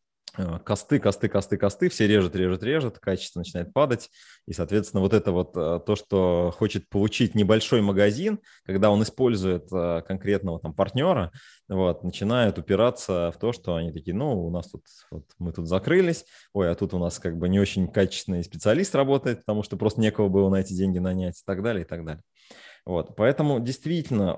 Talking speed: 175 wpm